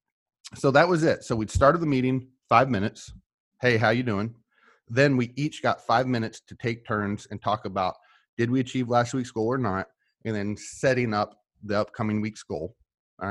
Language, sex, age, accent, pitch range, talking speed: English, male, 30-49, American, 100-125 Hz, 200 wpm